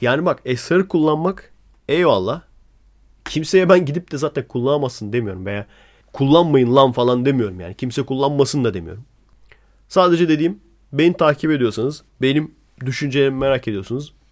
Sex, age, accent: male, 30-49, native